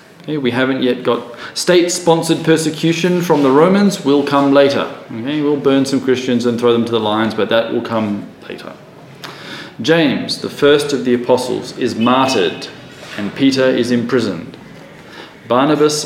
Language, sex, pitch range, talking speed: English, male, 125-160 Hz, 150 wpm